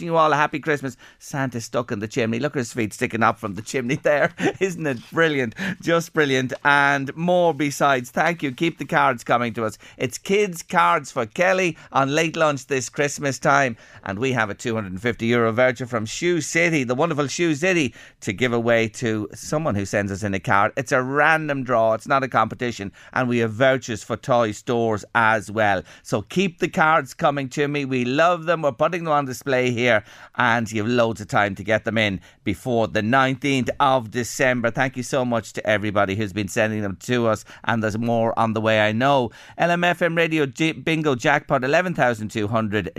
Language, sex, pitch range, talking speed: English, male, 110-150 Hz, 200 wpm